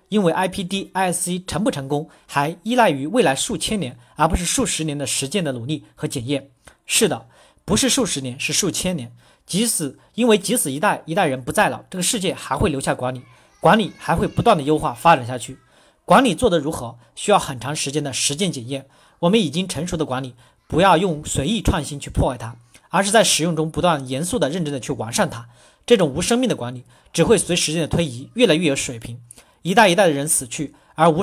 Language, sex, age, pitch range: Chinese, male, 40-59, 140-195 Hz